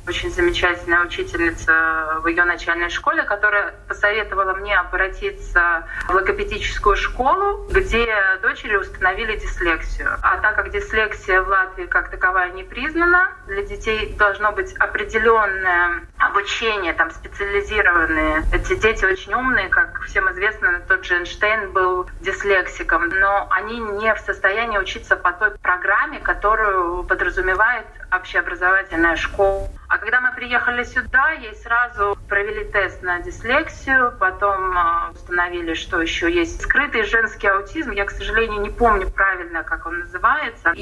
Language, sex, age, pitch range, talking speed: Russian, female, 20-39, 185-310 Hz, 130 wpm